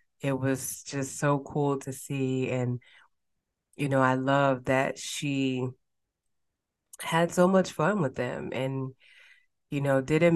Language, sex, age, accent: English, female, 20-39, American